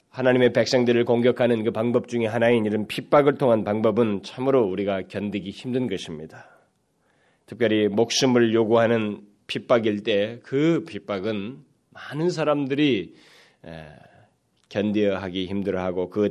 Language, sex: Korean, male